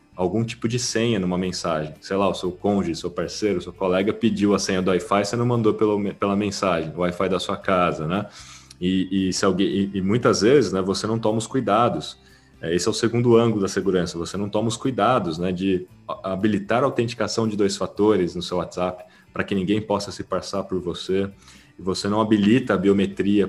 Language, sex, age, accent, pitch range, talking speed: Portuguese, male, 20-39, Brazilian, 95-115 Hz, 210 wpm